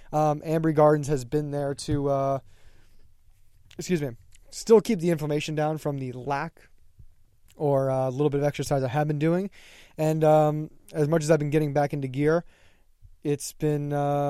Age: 20-39